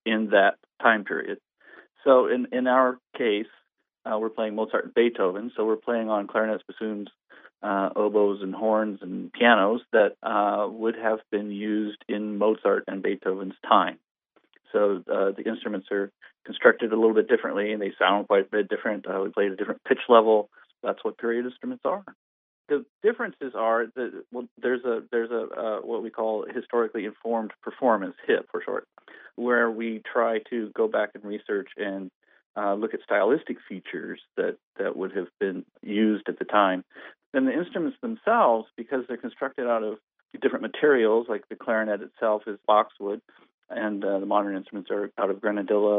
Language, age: English, 40-59